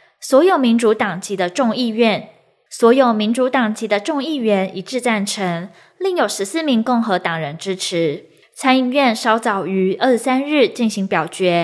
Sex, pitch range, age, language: female, 205-270 Hz, 20-39, Chinese